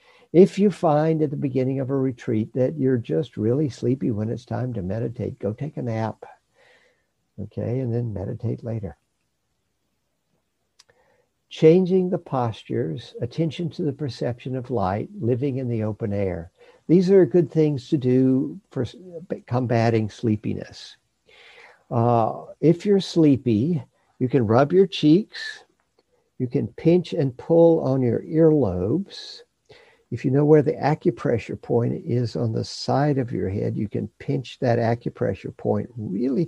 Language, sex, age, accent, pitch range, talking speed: English, male, 60-79, American, 115-155 Hz, 145 wpm